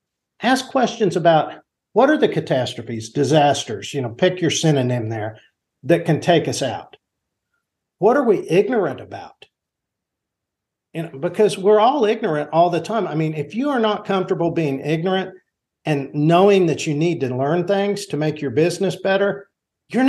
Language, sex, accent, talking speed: English, male, American, 160 wpm